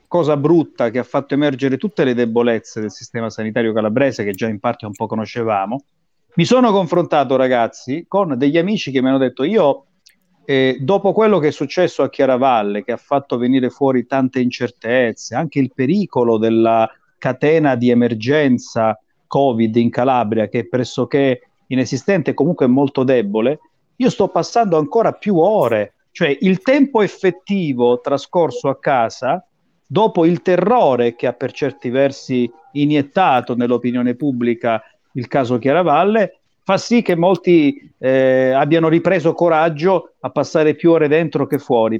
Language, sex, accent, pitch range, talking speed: Italian, male, native, 125-175 Hz, 150 wpm